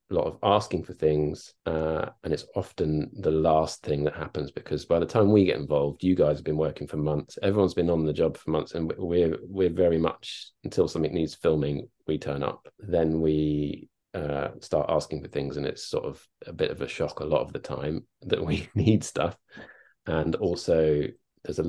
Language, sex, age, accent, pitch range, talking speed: English, male, 30-49, British, 75-85 Hz, 210 wpm